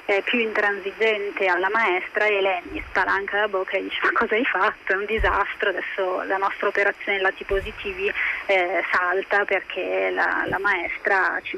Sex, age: female, 20-39